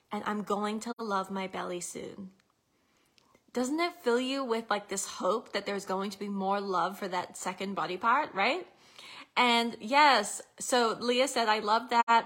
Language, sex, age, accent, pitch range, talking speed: English, female, 20-39, American, 195-245 Hz, 180 wpm